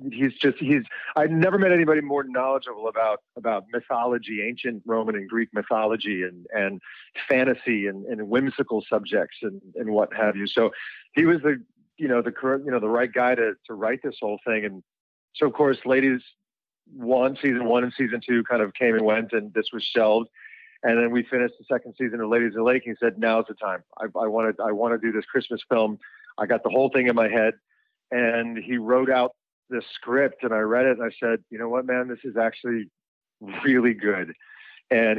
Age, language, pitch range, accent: 40-59, English, 110-130 Hz, American